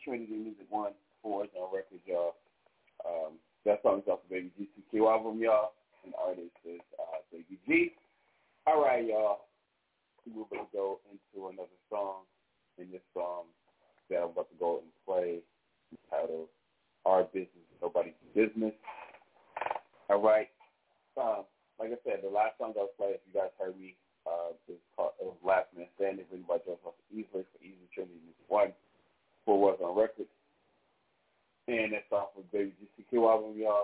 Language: English